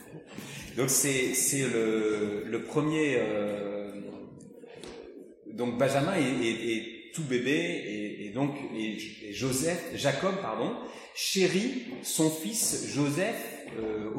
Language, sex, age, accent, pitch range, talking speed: French, male, 40-59, French, 115-160 Hz, 105 wpm